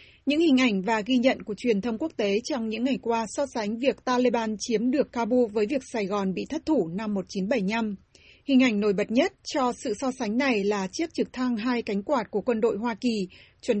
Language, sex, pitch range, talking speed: Vietnamese, female, 215-255 Hz, 235 wpm